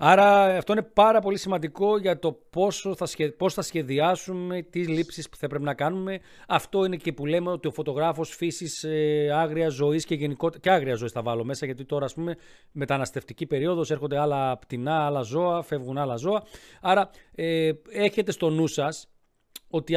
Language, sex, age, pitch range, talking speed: Greek, male, 40-59, 145-190 Hz, 175 wpm